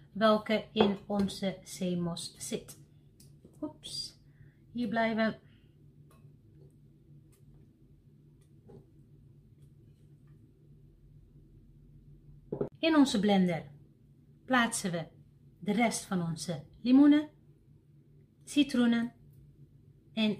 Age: 30-49